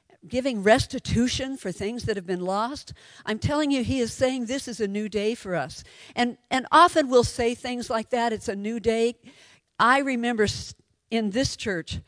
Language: English